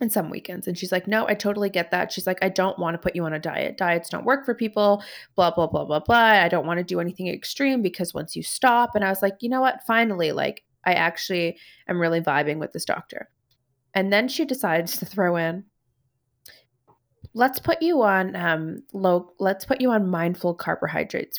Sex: female